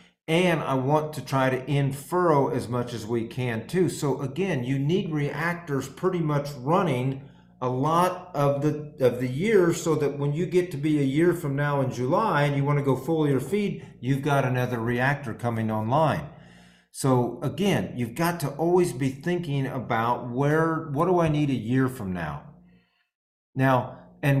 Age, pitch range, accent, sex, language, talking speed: 50-69, 125-155 Hz, American, male, English, 185 wpm